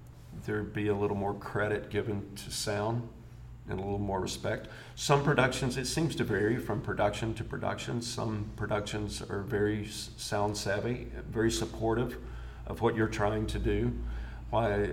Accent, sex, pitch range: American, male, 100-115 Hz